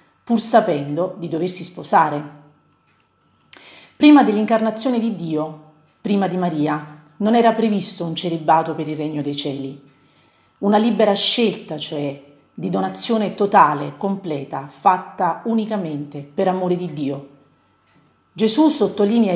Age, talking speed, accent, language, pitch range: 40-59, 120 wpm, native, Italian, 155-210 Hz